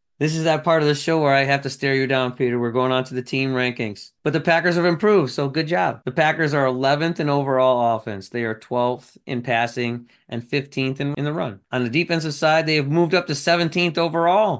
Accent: American